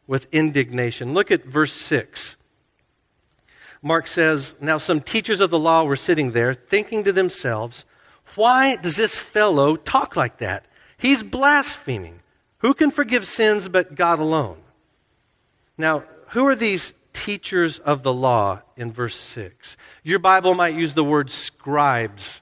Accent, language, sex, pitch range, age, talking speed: American, English, male, 135-185 Hz, 50-69, 145 wpm